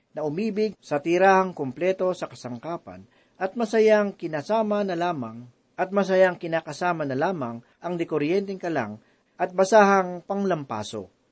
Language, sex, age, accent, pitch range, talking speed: Filipino, male, 40-59, native, 145-200 Hz, 120 wpm